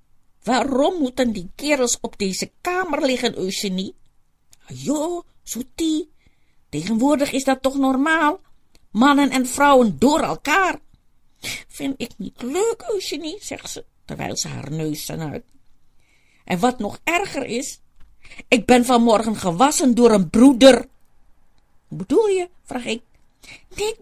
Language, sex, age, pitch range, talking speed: Dutch, female, 50-69, 235-340 Hz, 130 wpm